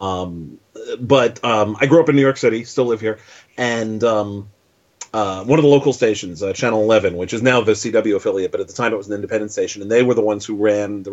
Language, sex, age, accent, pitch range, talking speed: English, male, 30-49, American, 100-125 Hz, 255 wpm